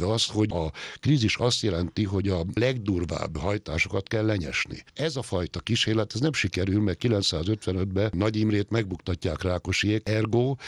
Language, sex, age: Hungarian, male, 60-79